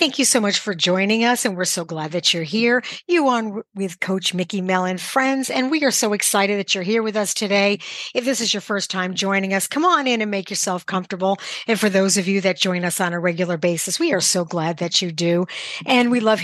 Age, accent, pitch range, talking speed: 50-69, American, 185-235 Hz, 250 wpm